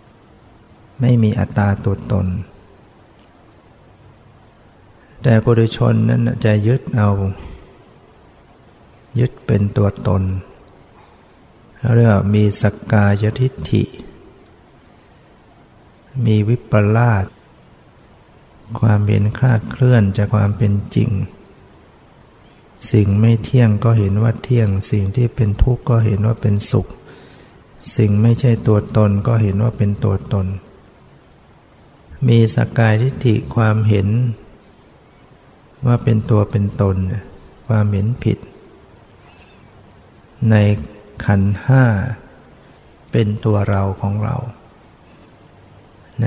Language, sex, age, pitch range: Thai, male, 60-79, 100-115 Hz